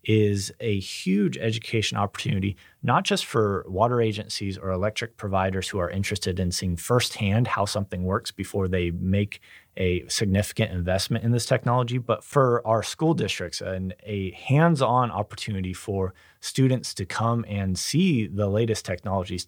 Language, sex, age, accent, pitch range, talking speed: English, male, 30-49, American, 95-115 Hz, 150 wpm